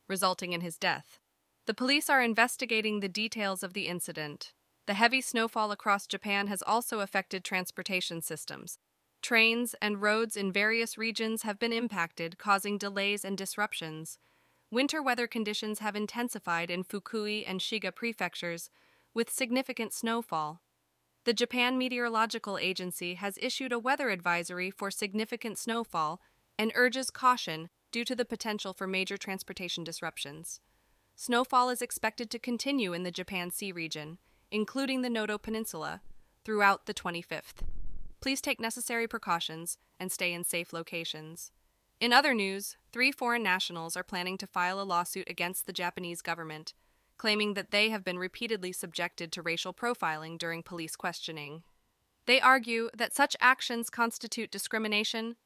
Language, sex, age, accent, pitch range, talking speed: English, female, 20-39, American, 180-230 Hz, 145 wpm